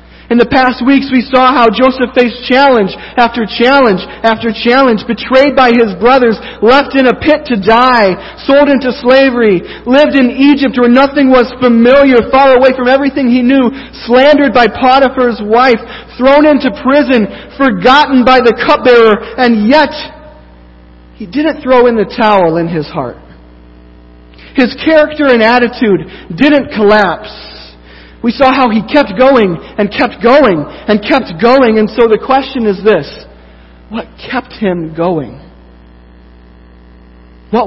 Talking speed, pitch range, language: 145 wpm, 175-255 Hz, English